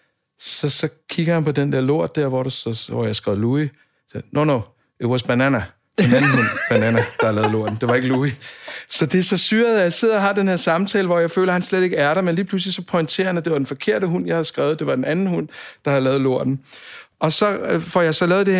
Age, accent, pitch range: 60-79, native, 130-175 Hz